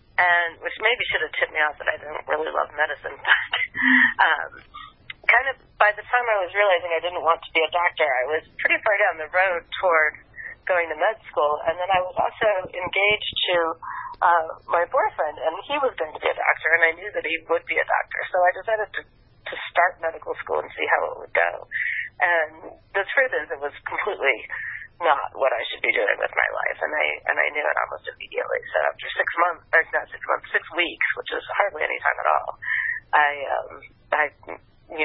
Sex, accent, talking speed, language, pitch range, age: female, American, 220 wpm, English, 155-245 Hz, 40-59